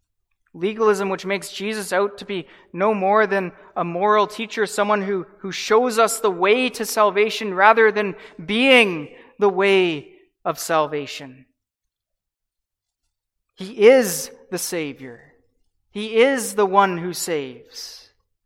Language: English